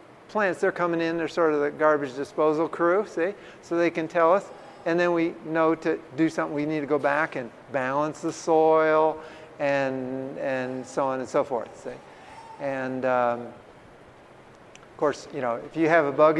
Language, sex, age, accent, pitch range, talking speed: English, male, 50-69, American, 135-160 Hz, 190 wpm